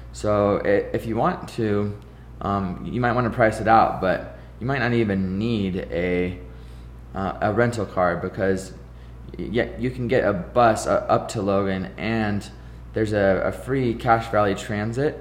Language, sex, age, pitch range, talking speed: English, male, 20-39, 90-110 Hz, 165 wpm